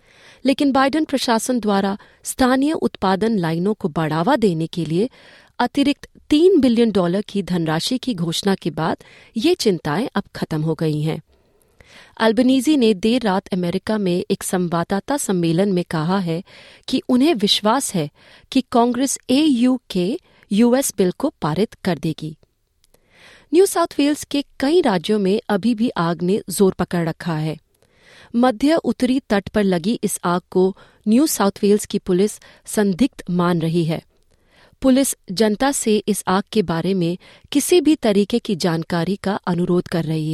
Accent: native